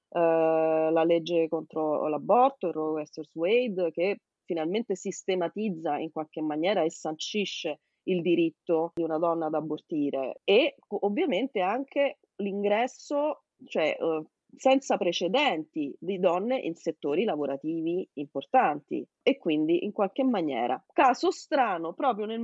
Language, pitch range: Italian, 175-275 Hz